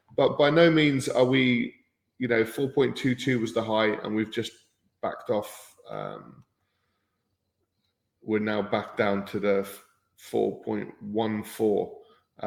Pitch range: 105-120 Hz